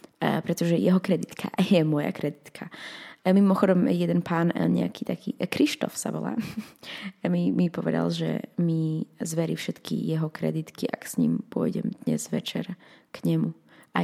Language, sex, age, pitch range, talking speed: Slovak, female, 20-39, 175-230 Hz, 135 wpm